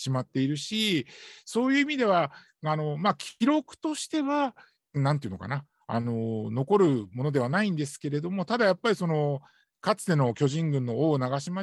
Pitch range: 130-190 Hz